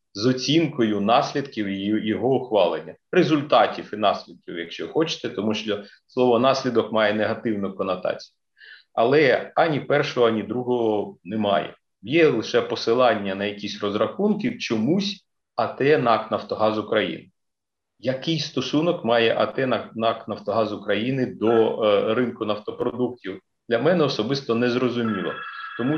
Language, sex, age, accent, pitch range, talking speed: Ukrainian, male, 40-59, native, 105-150 Hz, 115 wpm